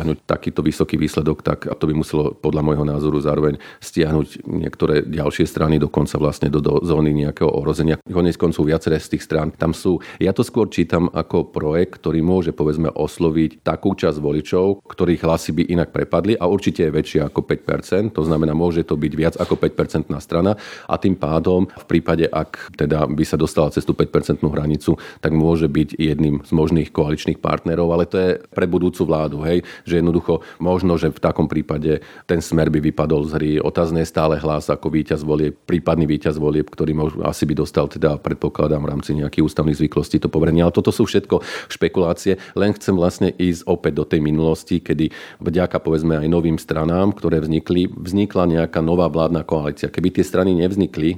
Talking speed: 185 wpm